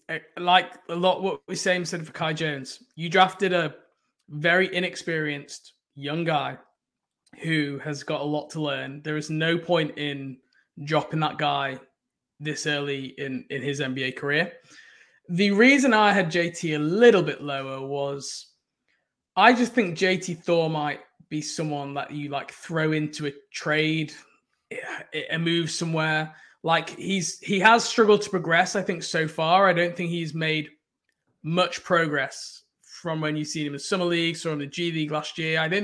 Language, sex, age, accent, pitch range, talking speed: English, male, 20-39, British, 150-180 Hz, 175 wpm